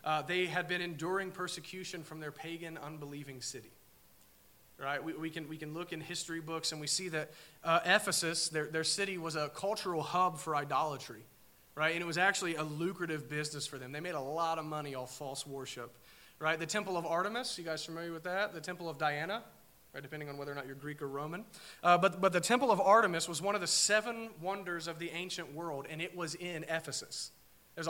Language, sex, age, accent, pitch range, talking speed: English, male, 30-49, American, 155-185 Hz, 220 wpm